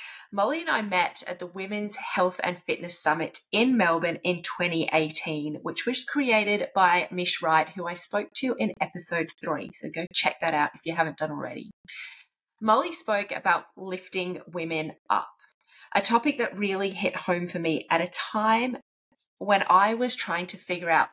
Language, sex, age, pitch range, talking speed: English, female, 20-39, 165-215 Hz, 175 wpm